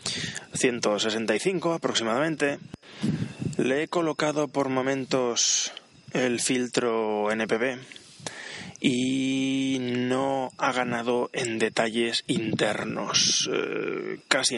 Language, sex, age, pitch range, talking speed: Spanish, male, 20-39, 110-130 Hz, 80 wpm